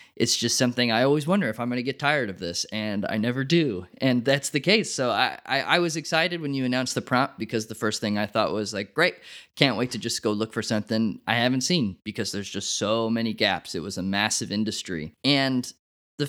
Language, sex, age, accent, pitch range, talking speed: English, male, 20-39, American, 110-140 Hz, 245 wpm